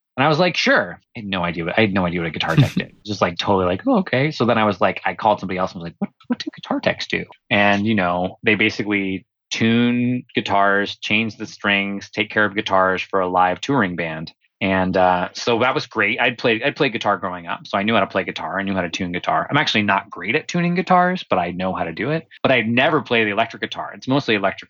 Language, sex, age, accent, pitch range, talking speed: English, male, 20-39, American, 95-115 Hz, 275 wpm